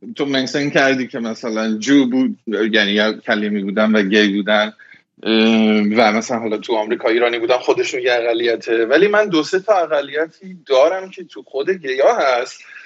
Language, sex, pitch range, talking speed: Persian, male, 110-170 Hz, 165 wpm